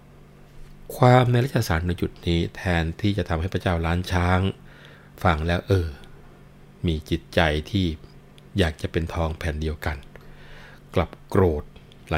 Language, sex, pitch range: Thai, male, 85-110 Hz